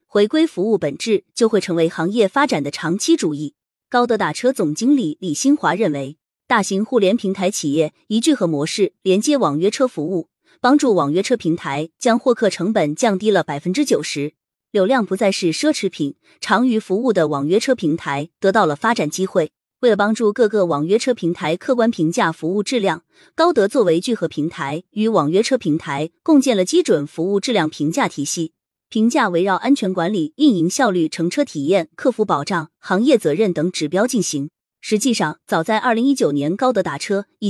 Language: Chinese